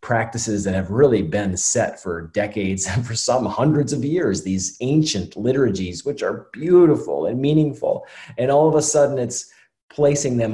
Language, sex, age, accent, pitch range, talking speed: English, male, 30-49, American, 95-125 Hz, 170 wpm